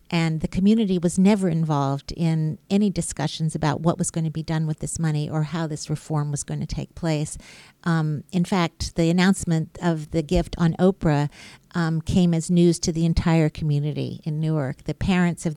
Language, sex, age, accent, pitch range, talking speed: English, female, 50-69, American, 155-180 Hz, 195 wpm